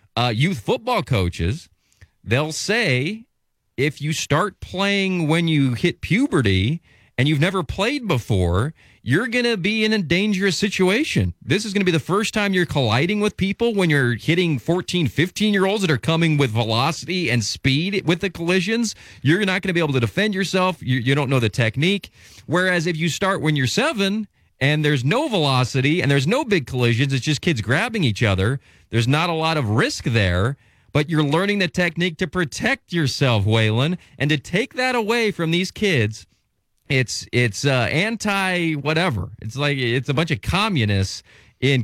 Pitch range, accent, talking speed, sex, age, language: 115-180 Hz, American, 180 wpm, male, 40-59, English